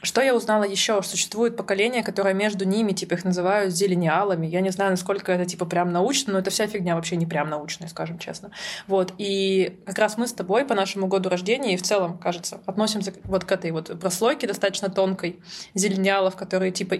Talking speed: 200 wpm